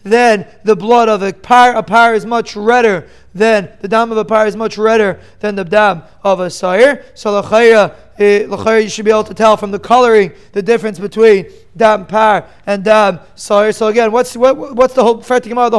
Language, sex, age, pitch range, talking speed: English, male, 20-39, 215-250 Hz, 200 wpm